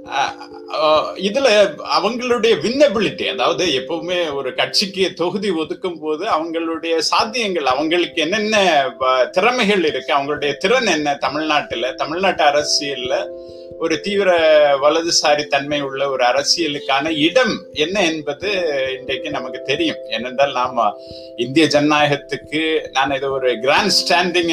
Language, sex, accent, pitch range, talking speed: Tamil, male, native, 150-210 Hz, 110 wpm